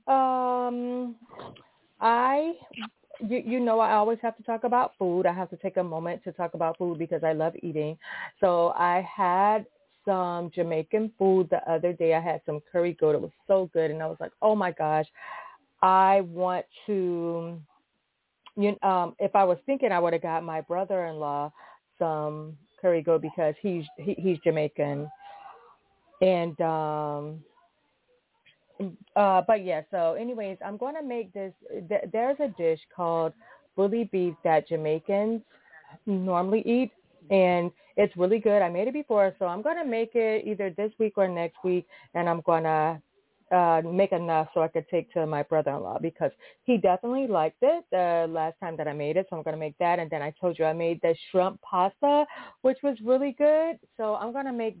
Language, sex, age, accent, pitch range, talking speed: English, female, 30-49, American, 165-225 Hz, 185 wpm